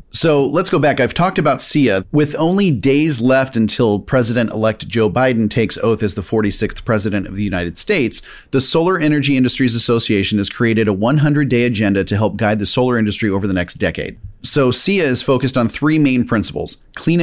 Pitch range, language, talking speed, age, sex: 110-140 Hz, English, 190 wpm, 30-49, male